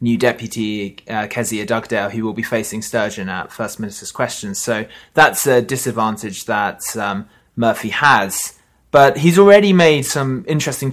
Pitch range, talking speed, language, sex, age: 110-125 Hz, 155 wpm, English, male, 20-39